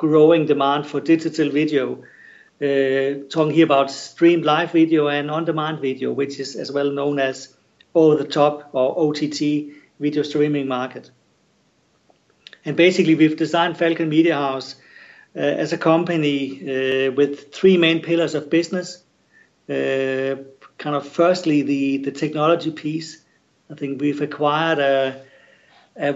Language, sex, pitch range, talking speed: English, male, 135-155 Hz, 140 wpm